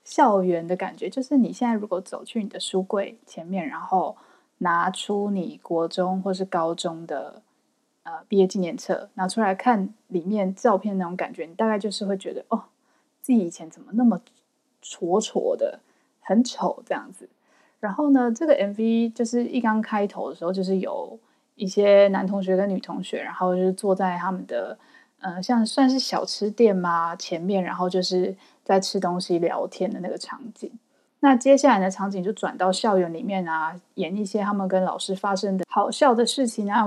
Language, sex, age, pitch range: Chinese, female, 20-39, 185-245 Hz